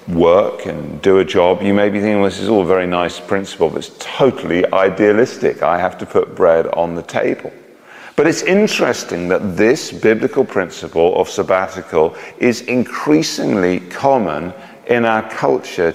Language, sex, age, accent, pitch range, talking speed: English, male, 40-59, British, 95-150 Hz, 165 wpm